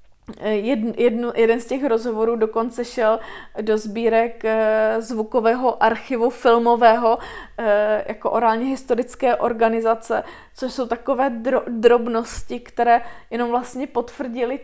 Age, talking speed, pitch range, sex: 20-39, 95 wpm, 220-245 Hz, female